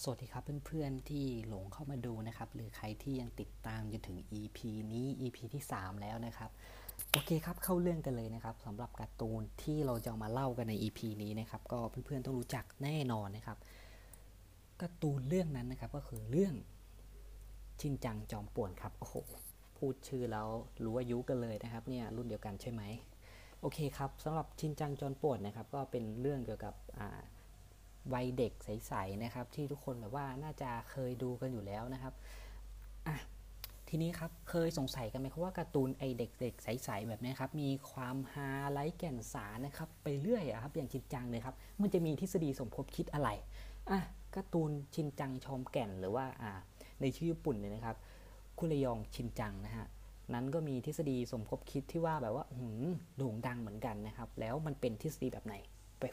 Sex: female